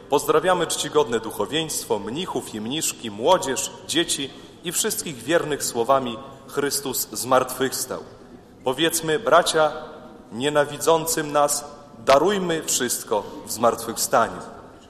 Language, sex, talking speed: Polish, male, 90 wpm